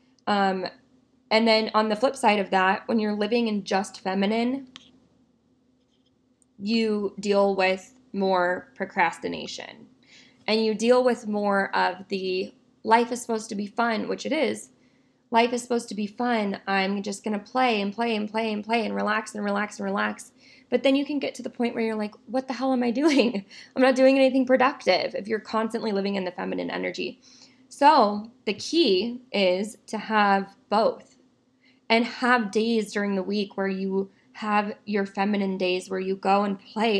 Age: 20-39